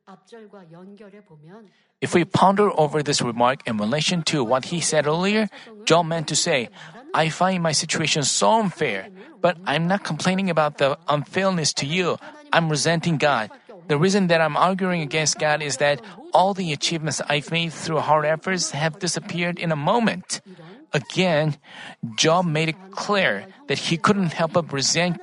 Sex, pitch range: male, 150-190 Hz